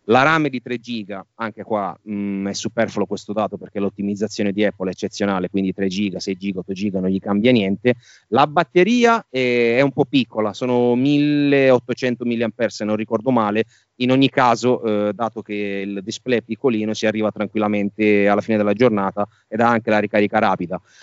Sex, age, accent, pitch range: male, 30-49, native, 100-120 Hz